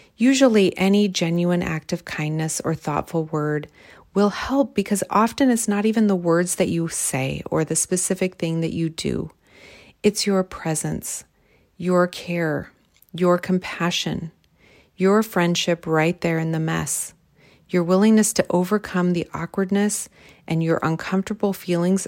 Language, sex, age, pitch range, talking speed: English, female, 40-59, 160-190 Hz, 140 wpm